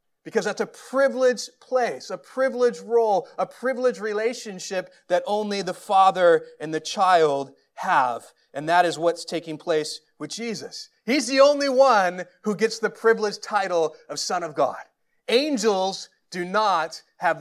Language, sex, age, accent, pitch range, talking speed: English, male, 30-49, American, 170-225 Hz, 150 wpm